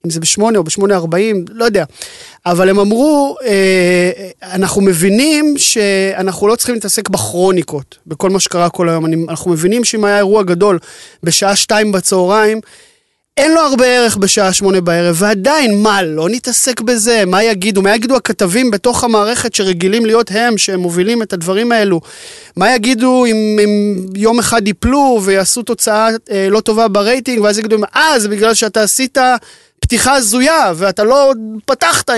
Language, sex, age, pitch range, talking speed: Hebrew, male, 20-39, 180-235 Hz, 145 wpm